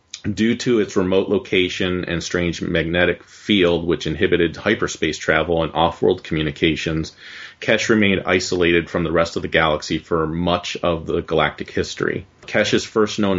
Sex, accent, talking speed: male, American, 150 wpm